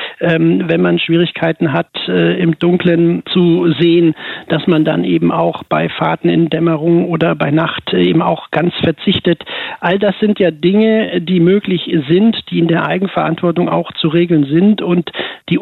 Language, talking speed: German, 160 wpm